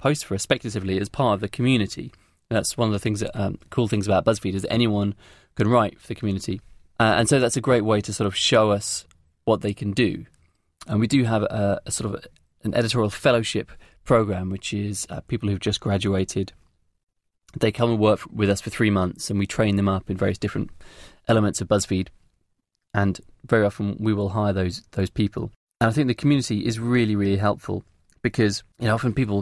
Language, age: English, 20-39